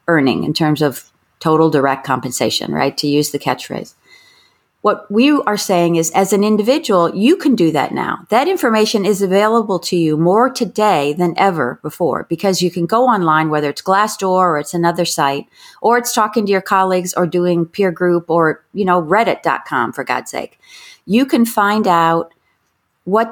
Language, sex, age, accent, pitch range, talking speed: English, female, 40-59, American, 165-225 Hz, 180 wpm